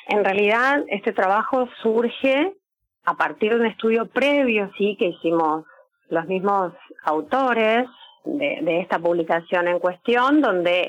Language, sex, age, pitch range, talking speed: Spanish, female, 40-59, 200-270 Hz, 130 wpm